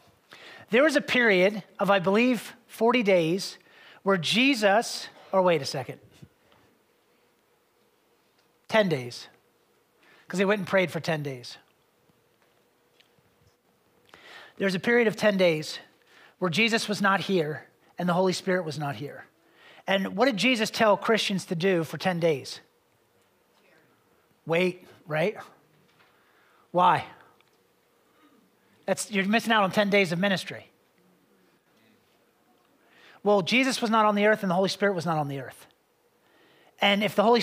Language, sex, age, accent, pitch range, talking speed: English, male, 40-59, American, 170-215 Hz, 140 wpm